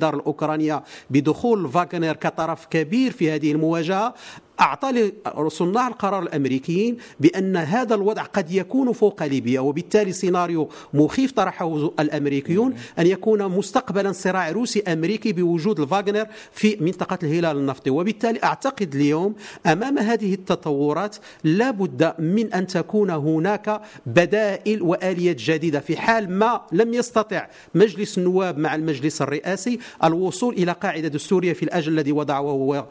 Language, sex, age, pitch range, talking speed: English, male, 50-69, 160-210 Hz, 130 wpm